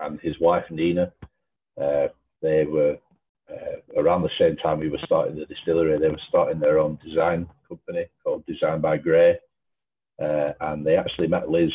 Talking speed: 175 wpm